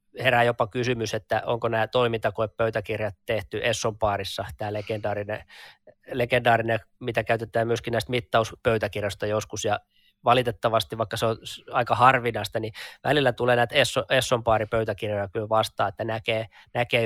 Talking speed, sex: 125 wpm, male